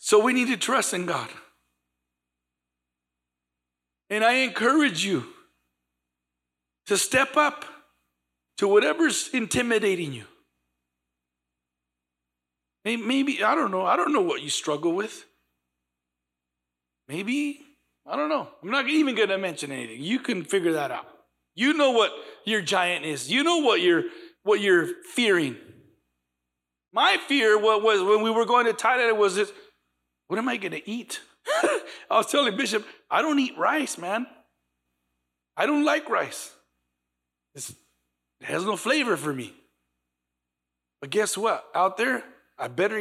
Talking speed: 140 wpm